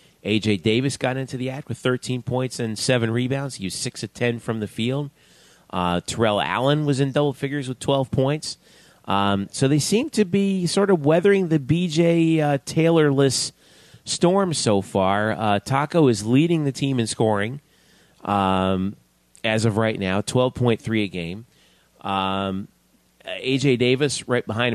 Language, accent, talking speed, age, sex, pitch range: English, American, 160 wpm, 30-49, male, 110-140 Hz